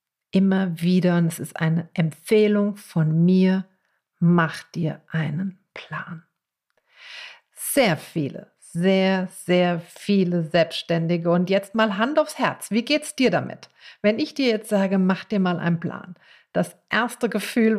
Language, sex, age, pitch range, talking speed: German, female, 50-69, 170-215 Hz, 145 wpm